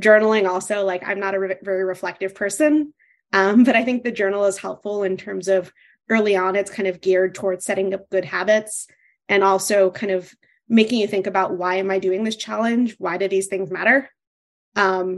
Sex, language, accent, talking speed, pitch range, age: female, English, American, 200 wpm, 190-215 Hz, 20-39